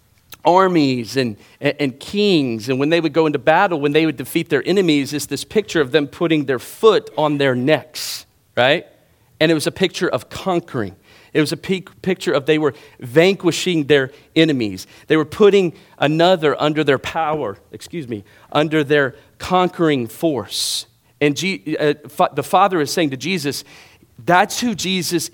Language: English